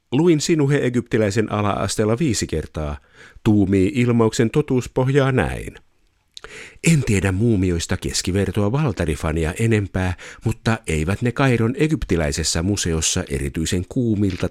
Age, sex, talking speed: 50-69, male, 100 wpm